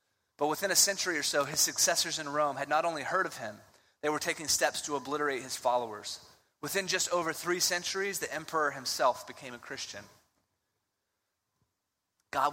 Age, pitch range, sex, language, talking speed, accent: 20-39, 140-175 Hz, male, English, 170 wpm, American